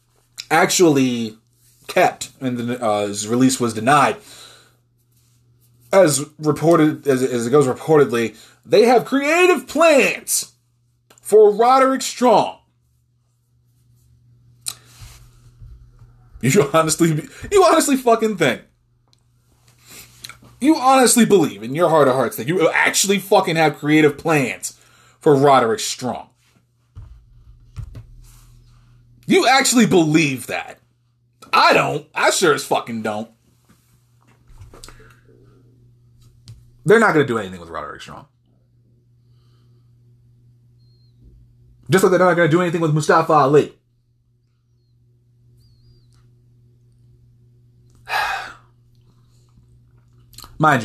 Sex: male